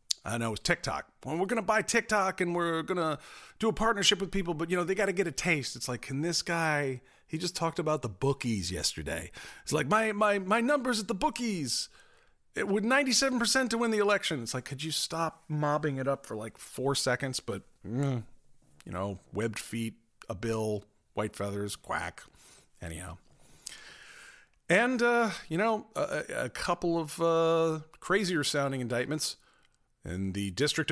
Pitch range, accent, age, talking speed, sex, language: 115-175 Hz, American, 40-59, 185 wpm, male, English